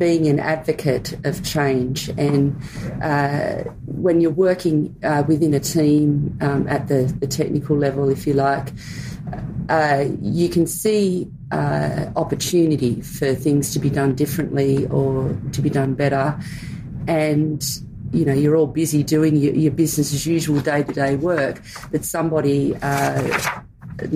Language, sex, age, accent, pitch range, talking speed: English, female, 40-59, Australian, 135-155 Hz, 145 wpm